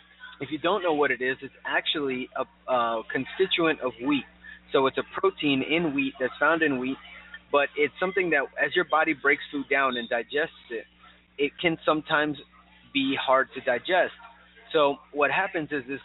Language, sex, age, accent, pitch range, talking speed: English, male, 30-49, American, 130-160 Hz, 185 wpm